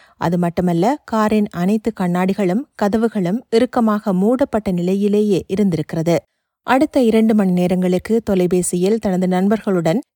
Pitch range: 180-225 Hz